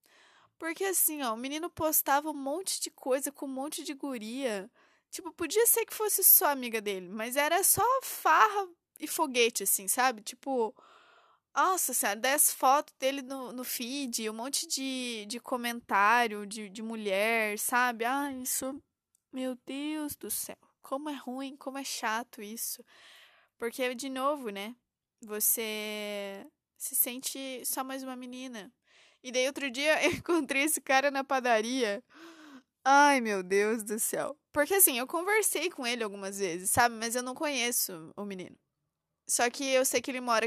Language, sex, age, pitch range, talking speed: Portuguese, female, 20-39, 230-295 Hz, 165 wpm